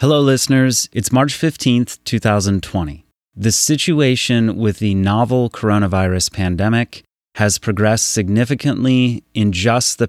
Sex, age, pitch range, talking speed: male, 30-49, 95-120 Hz, 115 wpm